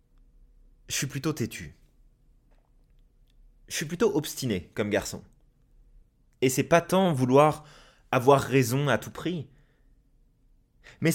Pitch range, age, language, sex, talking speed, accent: 125-150 Hz, 20-39, French, male, 115 wpm, French